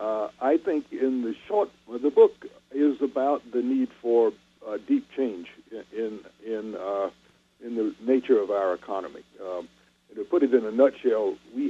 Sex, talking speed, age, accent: male, 180 wpm, 60-79, American